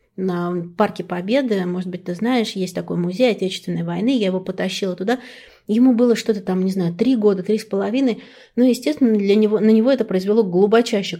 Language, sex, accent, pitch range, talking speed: Russian, female, native, 190-240 Hz, 195 wpm